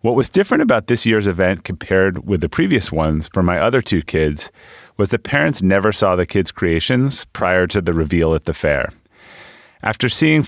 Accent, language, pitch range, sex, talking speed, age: American, English, 90-110 Hz, male, 195 wpm, 30-49